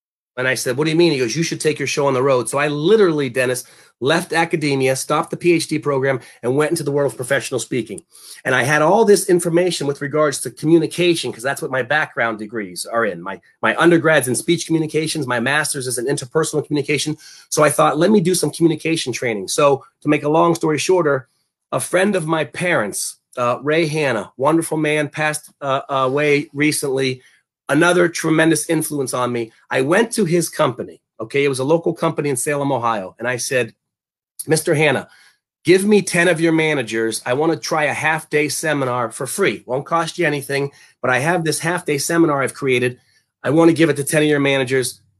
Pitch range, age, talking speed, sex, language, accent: 135-165 Hz, 30-49, 205 wpm, male, English, American